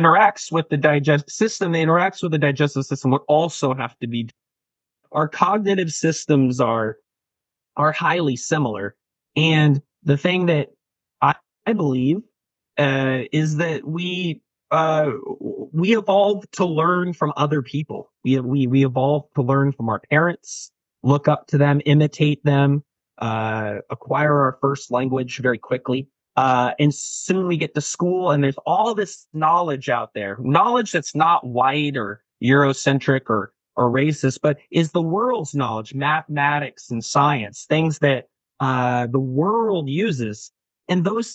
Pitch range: 135-165 Hz